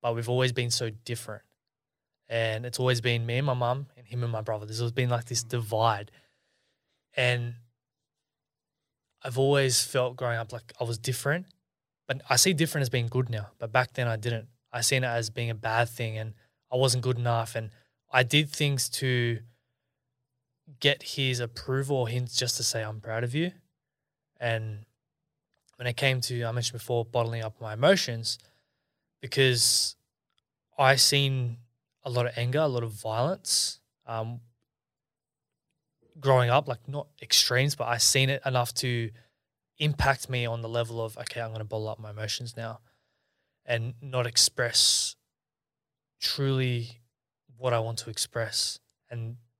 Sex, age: male, 20-39